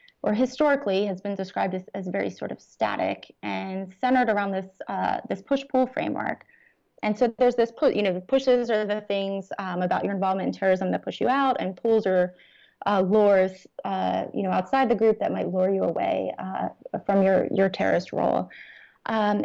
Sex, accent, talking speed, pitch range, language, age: female, American, 195 wpm, 195-255 Hz, English, 20-39